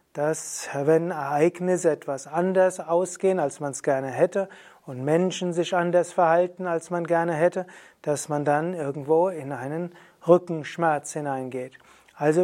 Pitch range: 155-195 Hz